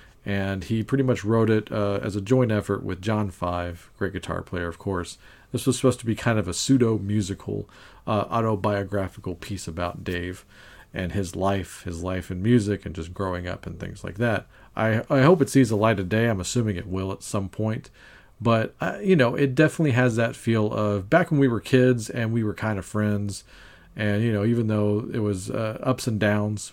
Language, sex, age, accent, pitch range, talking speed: English, male, 40-59, American, 95-115 Hz, 215 wpm